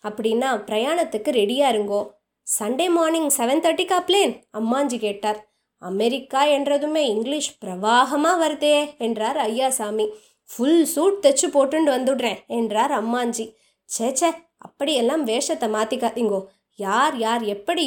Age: 20-39